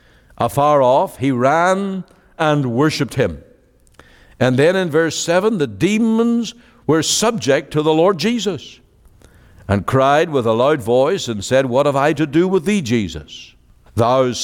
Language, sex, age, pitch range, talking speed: English, male, 60-79, 115-180 Hz, 155 wpm